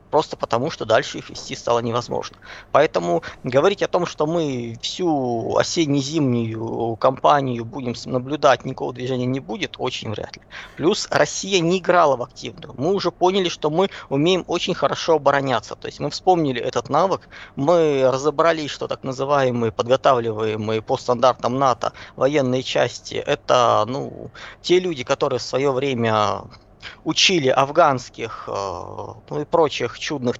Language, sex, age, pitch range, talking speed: Russian, male, 20-39, 125-170 Hz, 140 wpm